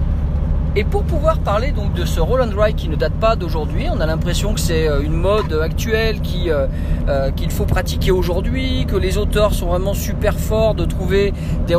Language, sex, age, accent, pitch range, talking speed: French, male, 40-59, French, 80-85 Hz, 205 wpm